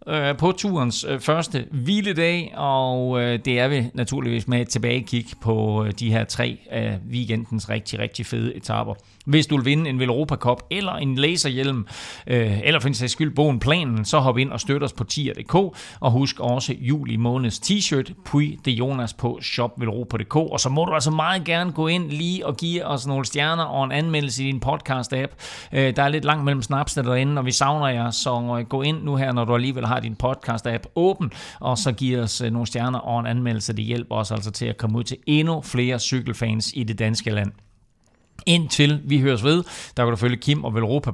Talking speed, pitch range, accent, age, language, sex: 200 wpm, 120-150 Hz, native, 40-59, Danish, male